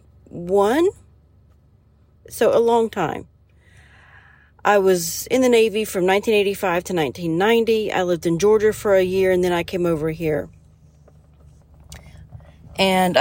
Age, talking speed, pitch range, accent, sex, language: 40-59, 125 wpm, 160-210 Hz, American, female, English